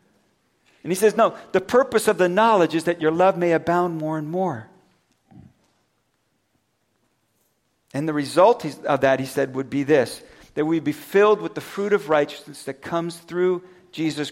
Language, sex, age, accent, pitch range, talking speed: English, male, 50-69, American, 140-185 Hz, 170 wpm